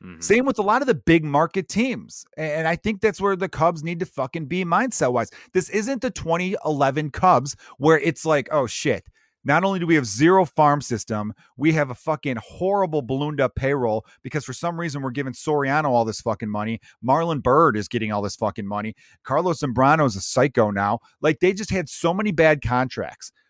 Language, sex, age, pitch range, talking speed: English, male, 30-49, 130-175 Hz, 200 wpm